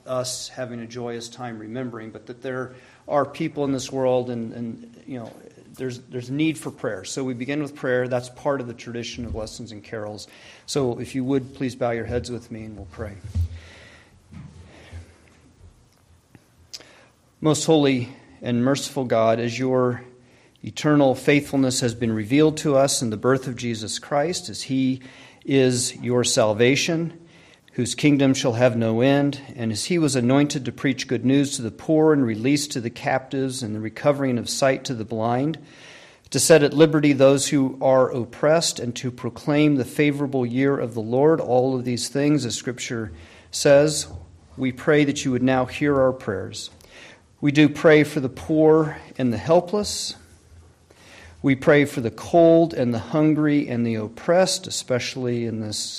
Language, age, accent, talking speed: English, 40-59, American, 175 wpm